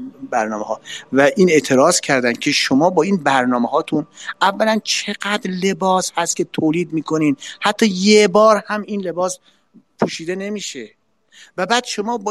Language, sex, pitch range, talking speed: Persian, male, 135-190 Hz, 145 wpm